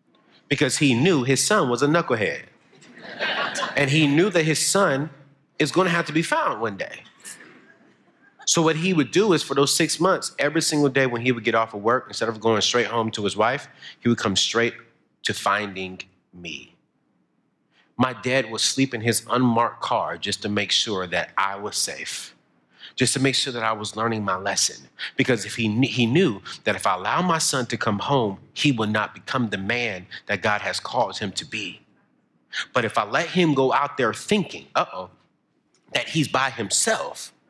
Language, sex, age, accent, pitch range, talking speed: English, male, 30-49, American, 110-150 Hz, 200 wpm